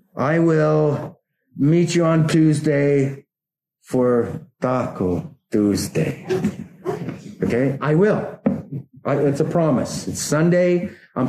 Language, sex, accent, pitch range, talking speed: English, male, American, 135-190 Hz, 95 wpm